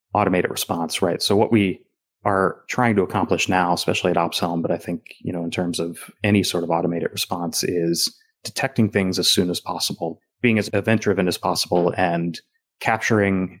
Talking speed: 180 wpm